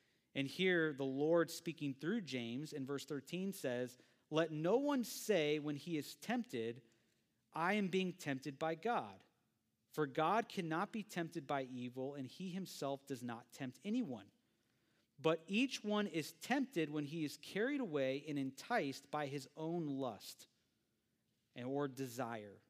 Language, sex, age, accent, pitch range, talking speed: English, male, 40-59, American, 125-170 Hz, 150 wpm